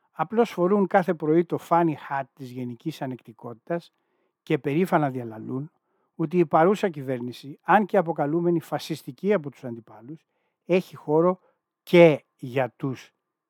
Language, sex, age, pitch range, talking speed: Greek, male, 60-79, 135-180 Hz, 125 wpm